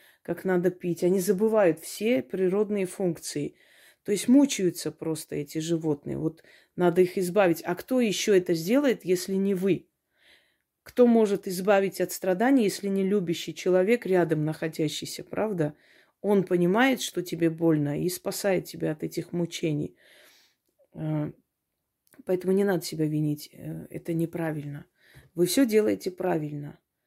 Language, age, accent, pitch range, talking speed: Russian, 30-49, native, 165-195 Hz, 135 wpm